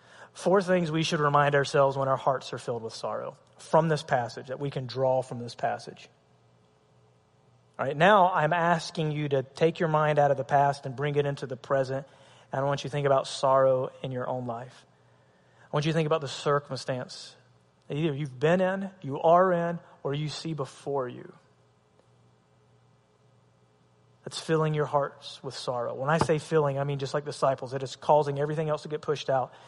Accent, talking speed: American, 200 wpm